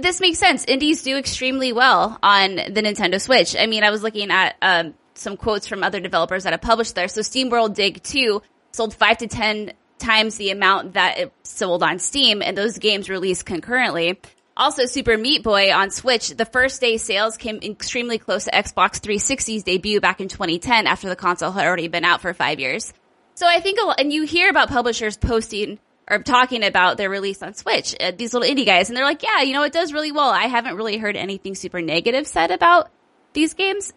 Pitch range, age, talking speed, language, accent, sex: 195-270 Hz, 20-39, 215 wpm, English, American, female